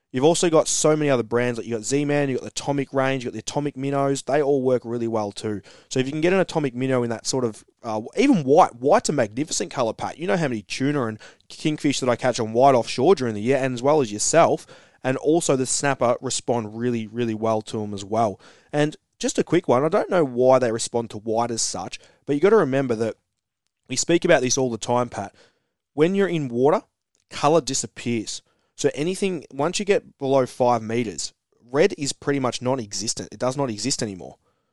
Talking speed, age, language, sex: 230 wpm, 20-39, English, male